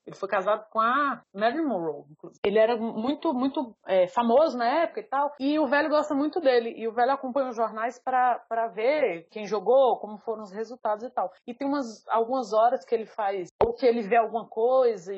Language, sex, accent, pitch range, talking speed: Portuguese, female, Brazilian, 195-255 Hz, 220 wpm